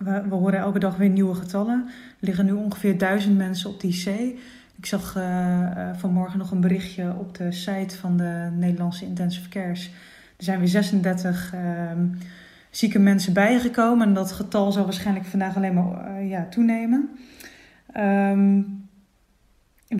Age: 20-39